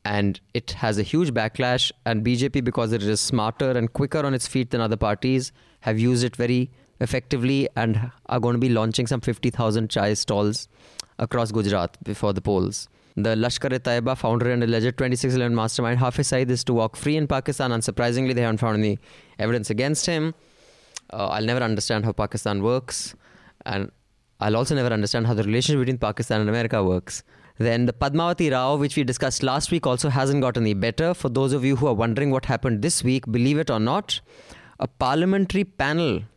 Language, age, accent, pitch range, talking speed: English, 20-39, Indian, 110-135 Hz, 190 wpm